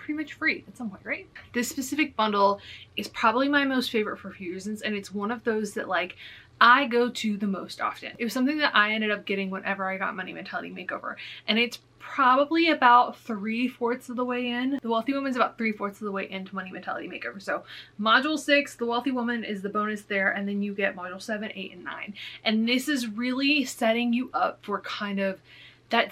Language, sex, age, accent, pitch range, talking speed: English, female, 20-39, American, 195-245 Hz, 225 wpm